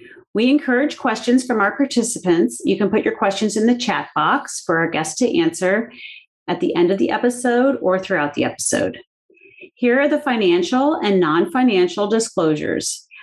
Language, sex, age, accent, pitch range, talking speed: English, female, 30-49, American, 175-245 Hz, 170 wpm